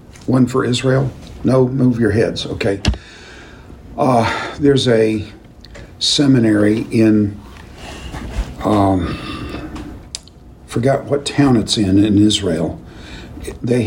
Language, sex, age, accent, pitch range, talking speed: English, male, 50-69, American, 95-130 Hz, 95 wpm